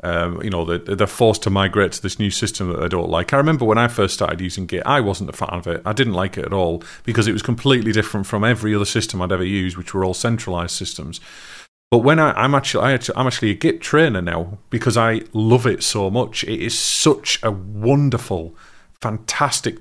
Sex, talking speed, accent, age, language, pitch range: male, 225 wpm, British, 40-59, English, 100-130 Hz